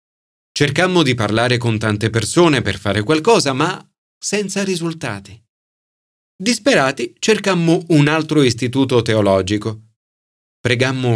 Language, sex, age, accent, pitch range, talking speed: Italian, male, 40-59, native, 115-175 Hz, 100 wpm